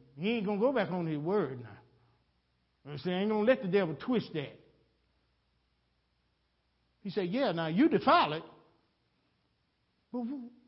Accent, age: American, 50-69